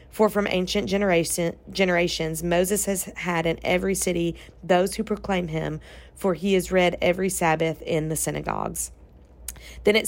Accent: American